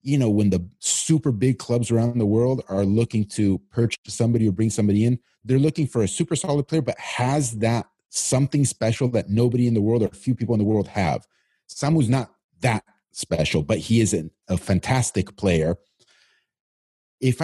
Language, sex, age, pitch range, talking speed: English, male, 30-49, 110-150 Hz, 190 wpm